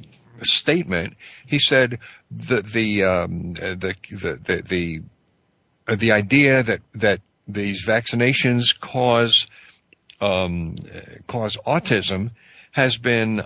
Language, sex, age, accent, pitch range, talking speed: English, male, 60-79, American, 100-135 Hz, 100 wpm